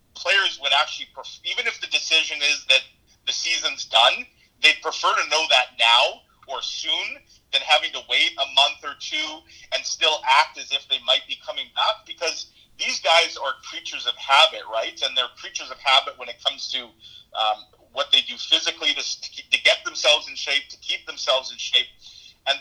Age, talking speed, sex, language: 40-59, 190 wpm, male, English